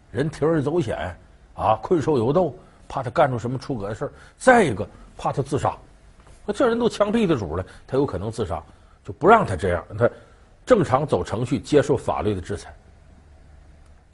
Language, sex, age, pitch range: Chinese, male, 50-69, 95-155 Hz